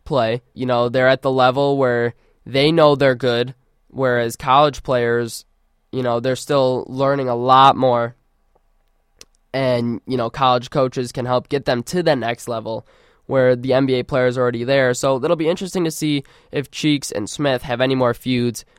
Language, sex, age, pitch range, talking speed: English, male, 20-39, 120-145 Hz, 180 wpm